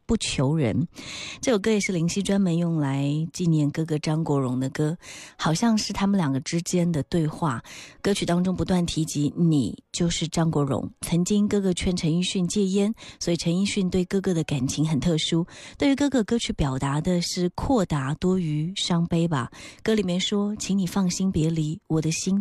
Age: 30-49